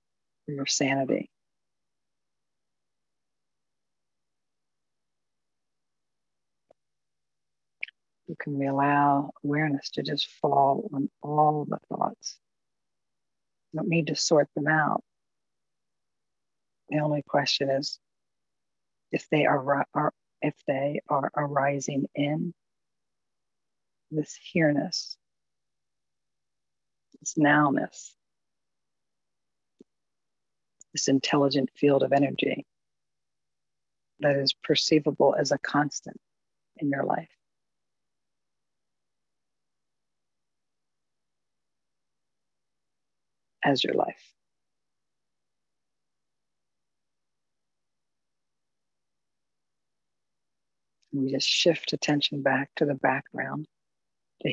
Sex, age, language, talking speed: female, 50-69, English, 70 wpm